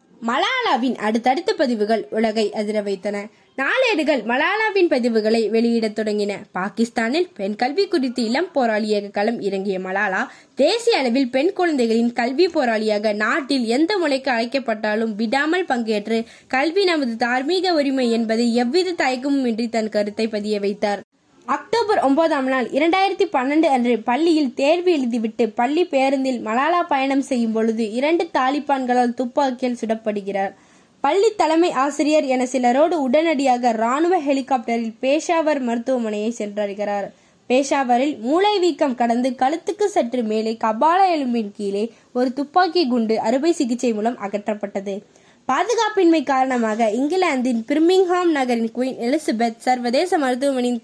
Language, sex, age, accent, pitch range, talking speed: Tamil, female, 20-39, native, 225-315 Hz, 115 wpm